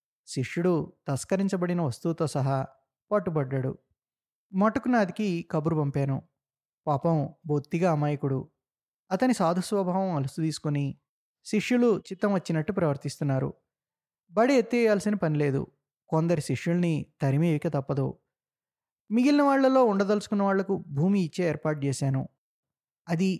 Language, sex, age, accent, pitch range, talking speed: Telugu, male, 20-39, native, 145-195 Hz, 90 wpm